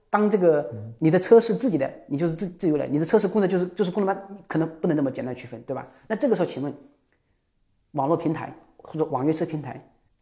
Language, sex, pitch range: Chinese, male, 145-205 Hz